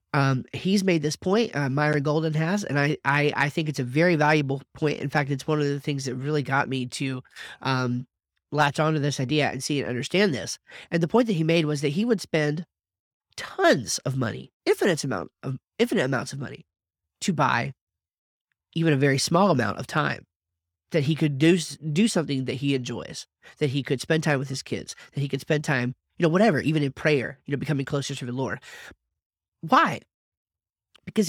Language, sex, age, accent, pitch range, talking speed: English, male, 30-49, American, 135-185 Hz, 205 wpm